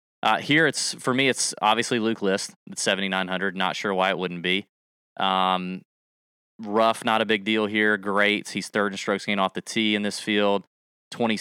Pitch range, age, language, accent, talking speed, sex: 95-110 Hz, 20-39, English, American, 200 wpm, male